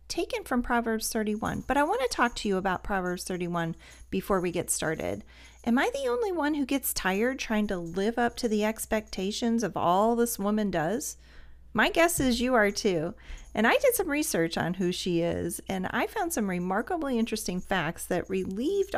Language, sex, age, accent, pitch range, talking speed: English, female, 40-59, American, 195-270 Hz, 195 wpm